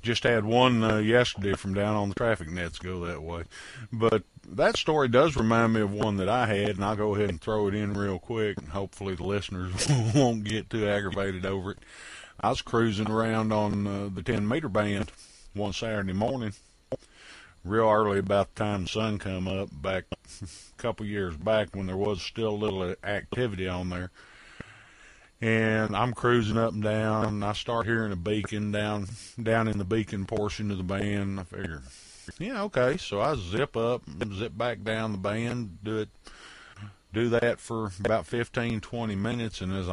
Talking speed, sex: 190 wpm, male